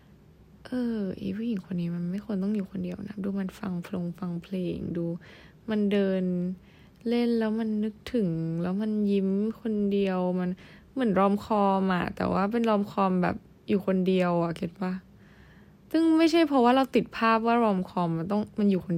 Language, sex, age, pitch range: Thai, female, 20-39, 180-225 Hz